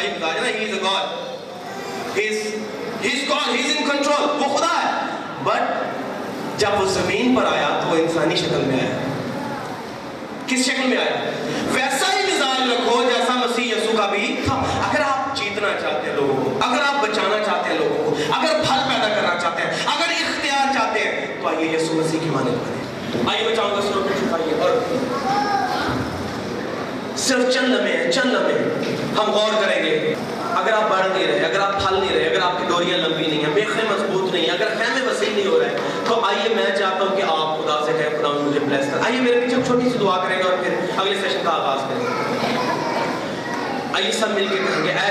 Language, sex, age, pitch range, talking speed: Urdu, male, 30-49, 185-245 Hz, 145 wpm